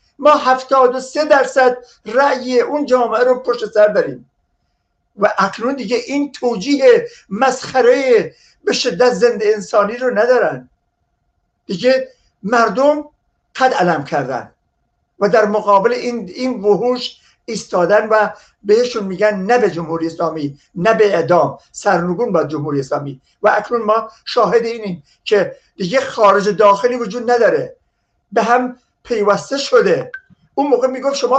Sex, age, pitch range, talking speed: male, 50-69, 210-275 Hz, 130 wpm